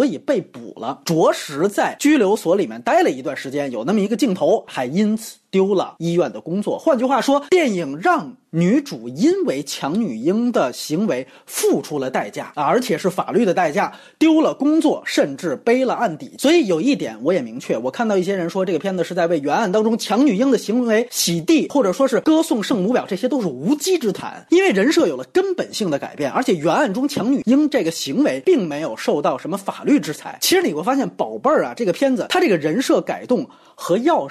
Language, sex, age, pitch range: Chinese, male, 30-49, 205-315 Hz